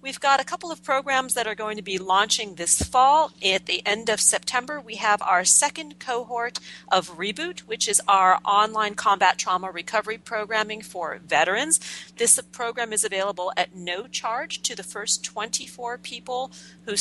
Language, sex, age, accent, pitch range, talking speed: English, female, 40-59, American, 185-235 Hz, 175 wpm